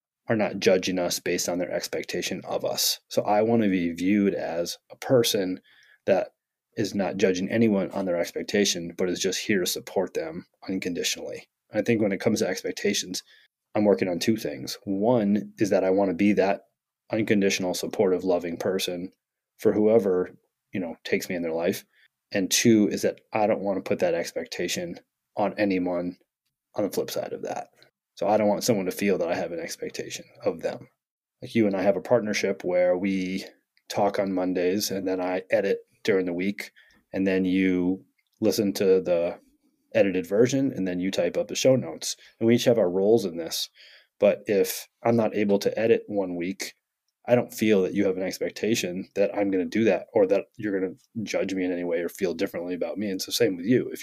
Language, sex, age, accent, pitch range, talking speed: English, male, 30-49, American, 90-105 Hz, 210 wpm